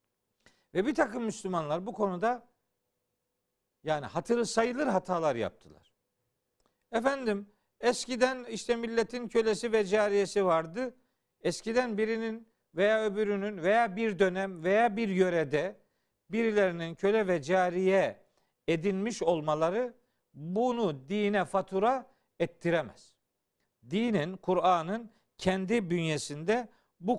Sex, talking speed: male, 95 wpm